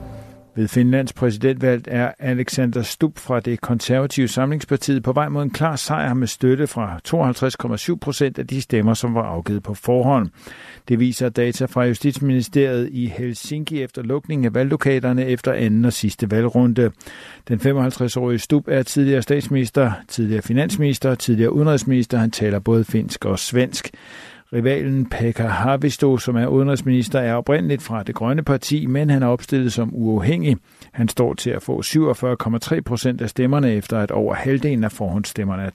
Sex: male